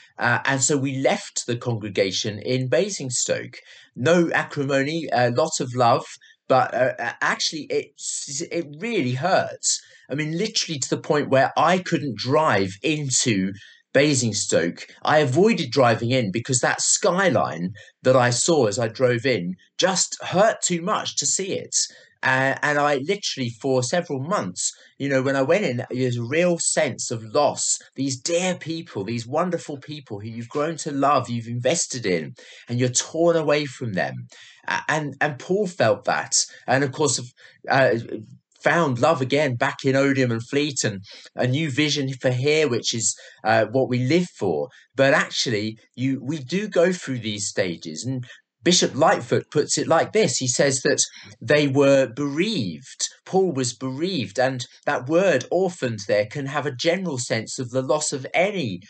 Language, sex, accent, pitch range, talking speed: English, male, British, 125-160 Hz, 170 wpm